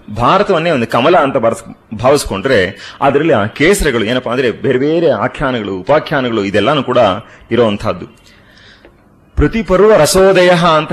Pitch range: 110-160 Hz